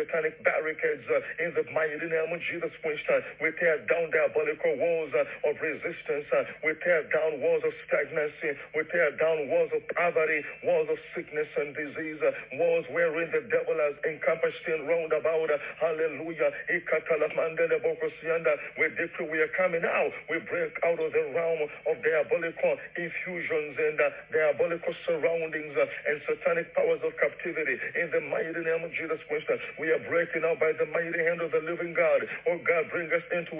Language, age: English, 50-69